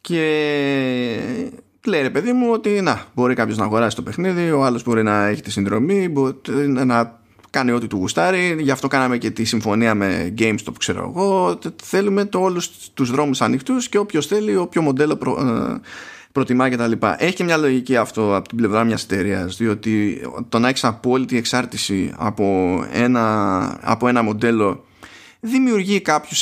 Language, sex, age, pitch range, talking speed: Greek, male, 20-39, 110-165 Hz, 155 wpm